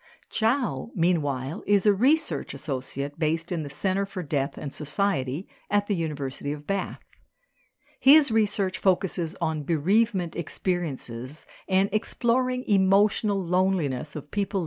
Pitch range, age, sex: 155-210 Hz, 60-79, female